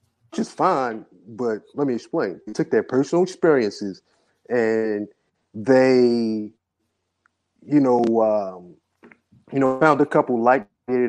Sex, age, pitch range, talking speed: male, 30-49, 110-150 Hz, 130 wpm